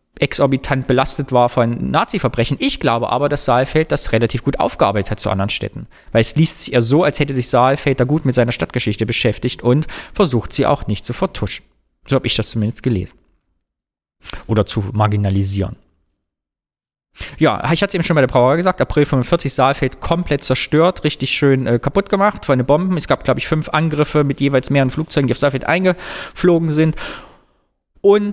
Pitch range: 115-150 Hz